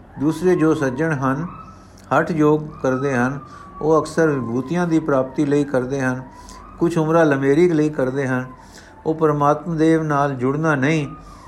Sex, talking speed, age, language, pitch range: male, 145 wpm, 50-69, Punjabi, 130-155 Hz